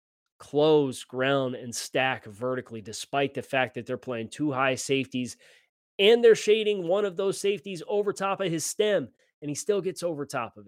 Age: 30-49